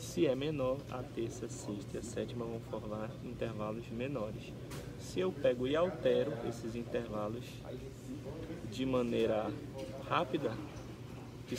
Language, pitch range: Portuguese, 120-140 Hz